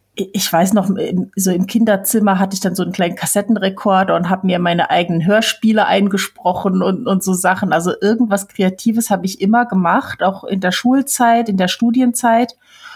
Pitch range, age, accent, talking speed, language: 180-225 Hz, 30-49, German, 175 wpm, German